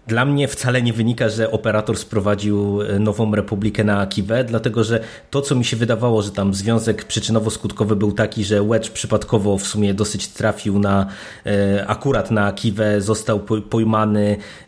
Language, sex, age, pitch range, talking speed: Polish, male, 20-39, 110-130 Hz, 155 wpm